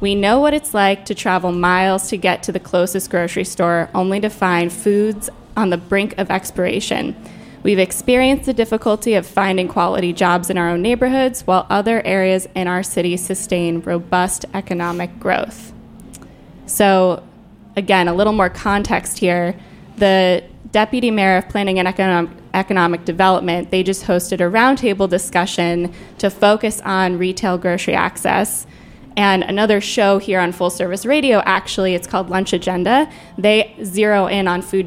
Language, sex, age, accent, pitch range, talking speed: English, female, 20-39, American, 180-215 Hz, 155 wpm